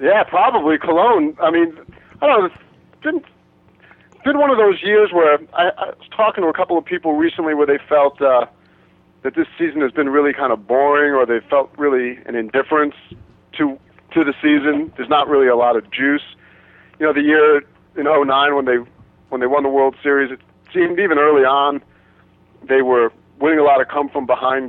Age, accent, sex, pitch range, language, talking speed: 40-59, American, male, 120-160 Hz, English, 195 wpm